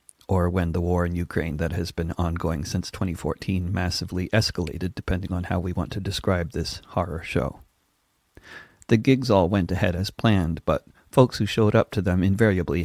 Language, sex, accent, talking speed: English, male, American, 180 wpm